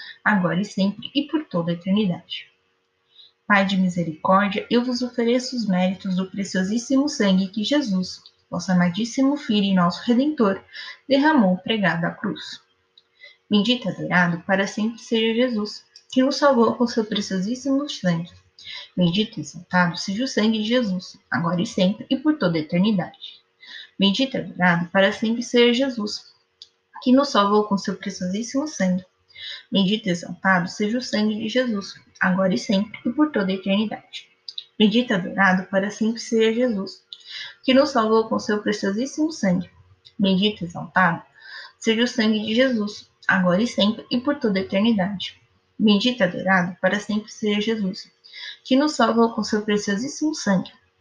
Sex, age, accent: female, 20-39, Brazilian